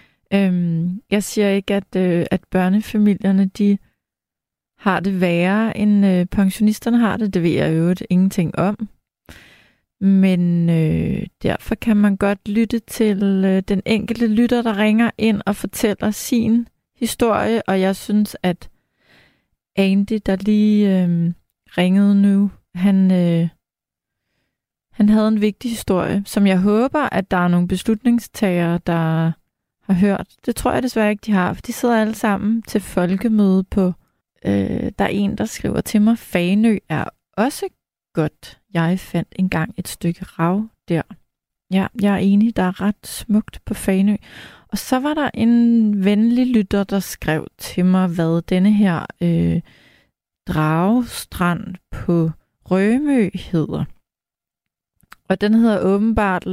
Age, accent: 30-49, native